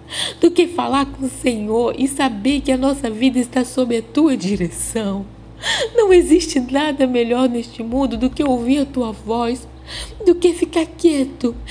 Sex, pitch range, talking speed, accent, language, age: female, 255-315 Hz, 170 wpm, Brazilian, Portuguese, 20-39